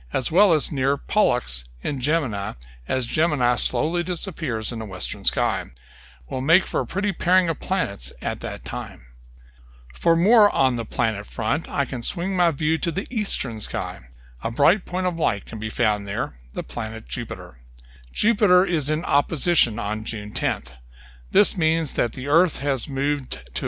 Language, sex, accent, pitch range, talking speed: English, male, American, 105-160 Hz, 170 wpm